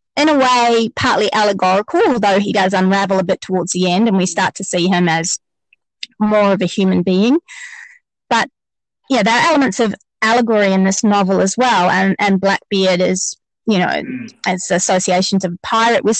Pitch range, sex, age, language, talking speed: 190-240 Hz, female, 30-49, English, 185 wpm